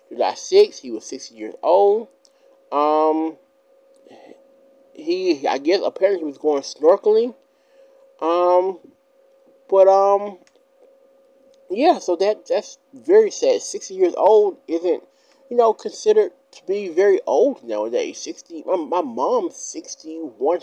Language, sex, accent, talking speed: English, male, American, 120 wpm